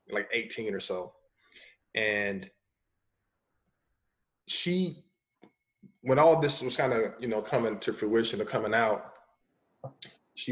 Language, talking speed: English, 120 wpm